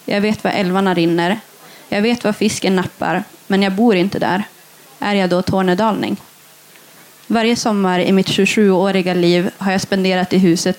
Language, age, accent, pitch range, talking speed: Swedish, 20-39, native, 180-205 Hz, 165 wpm